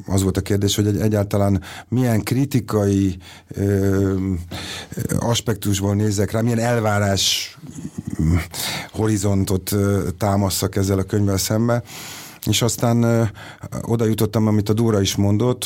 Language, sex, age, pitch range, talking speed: Hungarian, male, 50-69, 95-105 Hz, 110 wpm